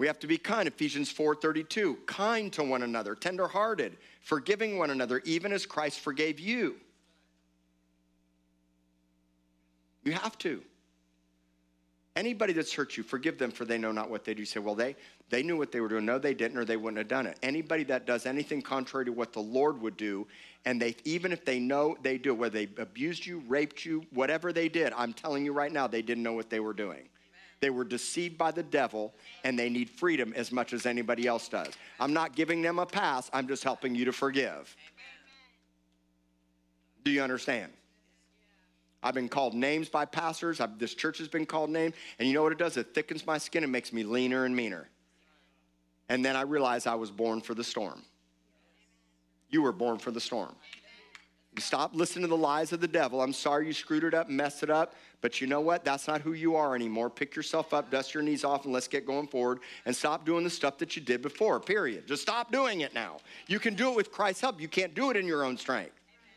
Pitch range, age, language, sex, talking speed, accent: 110-155 Hz, 50-69, English, male, 220 wpm, American